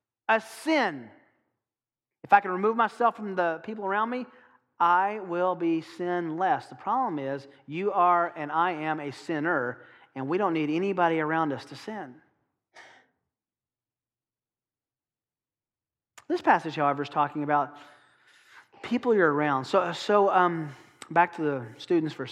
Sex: male